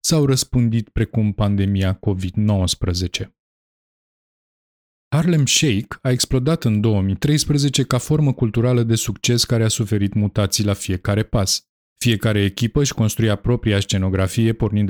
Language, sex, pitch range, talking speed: Romanian, male, 100-130 Hz, 120 wpm